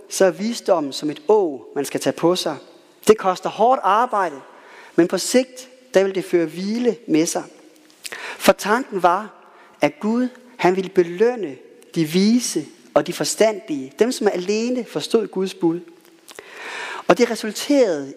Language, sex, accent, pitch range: Danish, male, native, 175-255 Hz